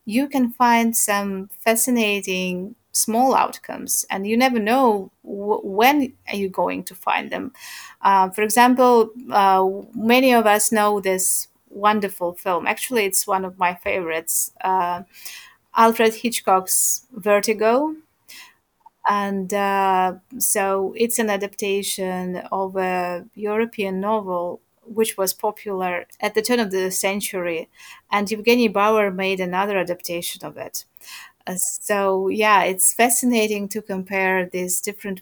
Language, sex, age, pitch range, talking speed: English, female, 30-49, 185-220 Hz, 130 wpm